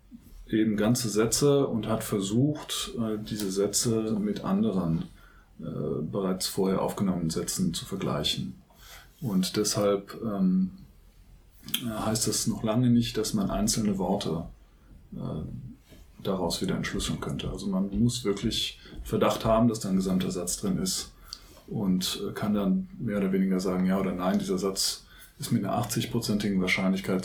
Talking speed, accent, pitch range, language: 135 wpm, German, 100-115 Hz, German